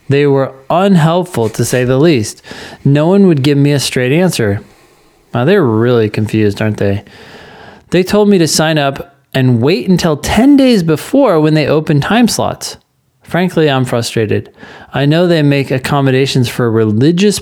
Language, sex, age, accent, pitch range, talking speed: English, male, 20-39, American, 125-160 Hz, 165 wpm